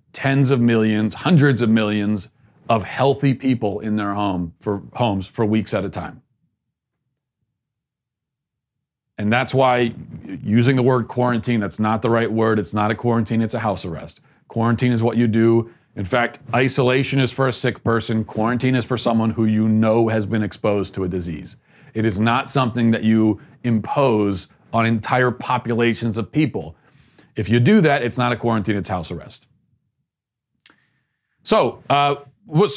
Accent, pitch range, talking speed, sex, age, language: American, 110-135 Hz, 165 wpm, male, 40-59, English